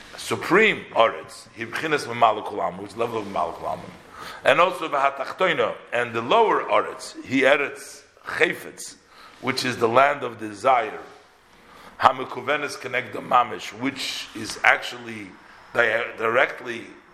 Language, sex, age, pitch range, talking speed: English, male, 50-69, 115-160 Hz, 125 wpm